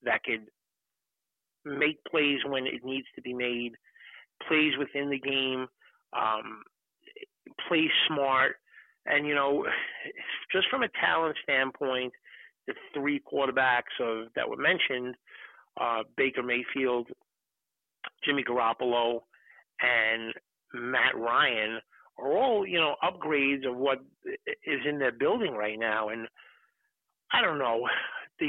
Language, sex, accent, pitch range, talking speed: English, male, American, 125-160 Hz, 120 wpm